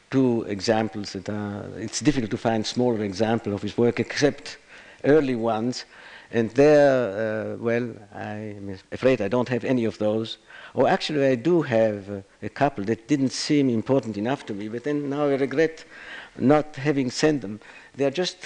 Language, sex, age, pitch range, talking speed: Spanish, male, 60-79, 105-130 Hz, 180 wpm